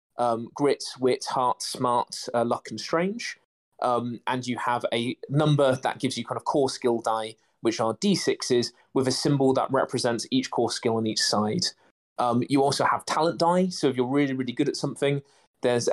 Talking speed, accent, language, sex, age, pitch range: 195 wpm, British, English, male, 20-39, 120-140 Hz